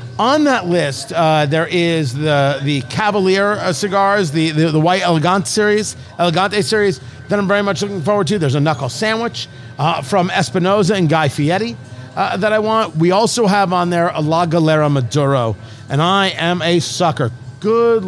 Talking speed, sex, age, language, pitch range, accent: 185 wpm, male, 50-69, English, 145-195 Hz, American